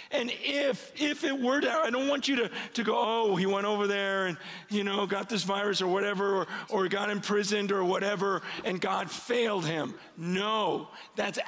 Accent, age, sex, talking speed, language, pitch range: American, 40-59, male, 200 wpm, English, 190-250 Hz